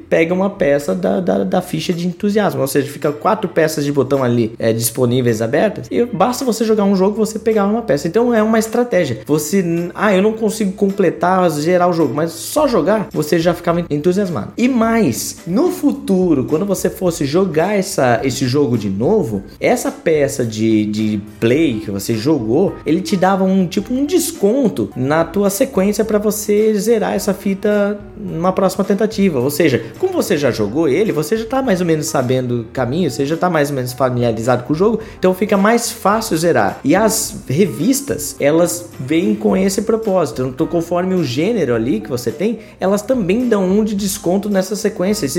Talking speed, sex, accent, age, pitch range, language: 190 wpm, male, Brazilian, 20-39, 150-215 Hz, Portuguese